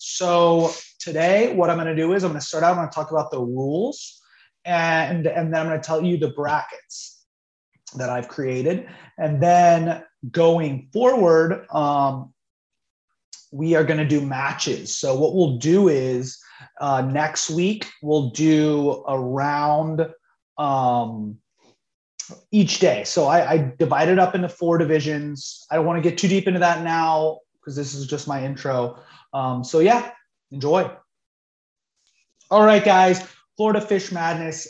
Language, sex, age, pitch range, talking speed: English, male, 30-49, 150-180 Hz, 165 wpm